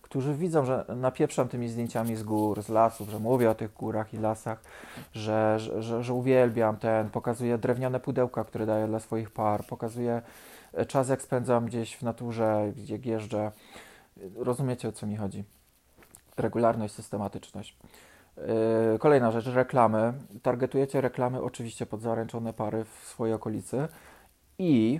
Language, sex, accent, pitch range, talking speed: Polish, male, native, 110-130 Hz, 145 wpm